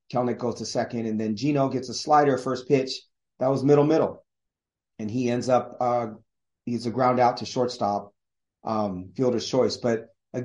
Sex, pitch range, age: male, 115-135 Hz, 30-49